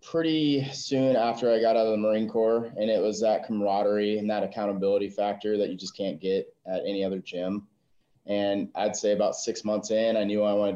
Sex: male